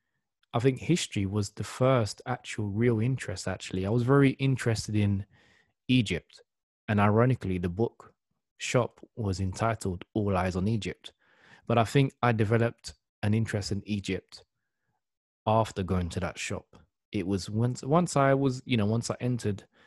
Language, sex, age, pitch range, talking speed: English, male, 20-39, 100-135 Hz, 155 wpm